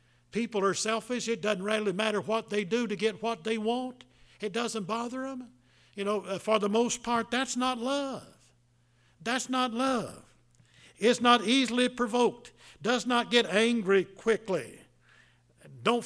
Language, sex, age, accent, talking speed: English, male, 60-79, American, 155 wpm